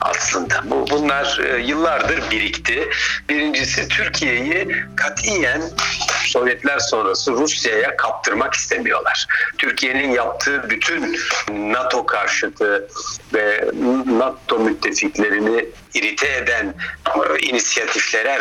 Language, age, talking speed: Turkish, 60-79, 80 wpm